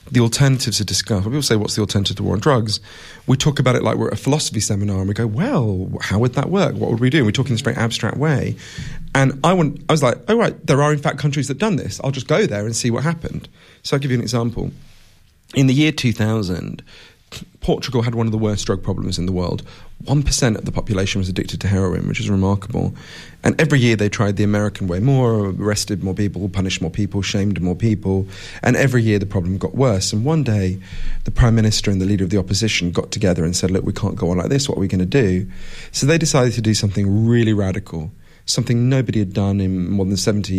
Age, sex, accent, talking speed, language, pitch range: 40-59, male, British, 250 wpm, English, 100-135 Hz